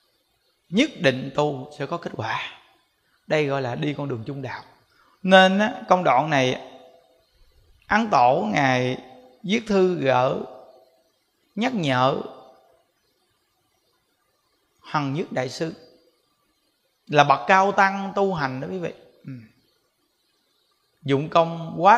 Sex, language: male, Vietnamese